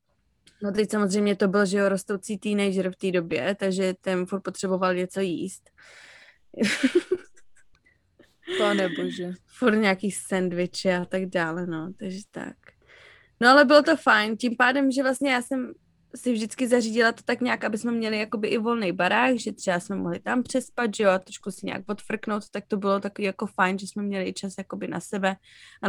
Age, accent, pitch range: 20-39, native, 185-225 Hz